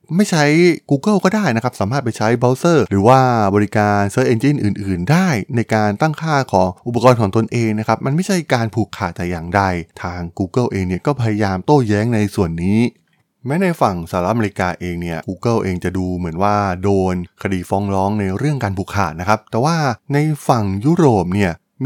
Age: 20-39